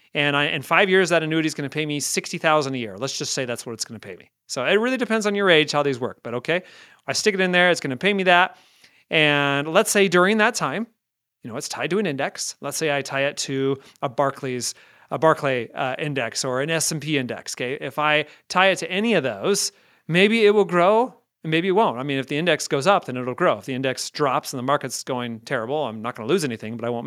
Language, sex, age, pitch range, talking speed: English, male, 30-49, 130-185 Hz, 270 wpm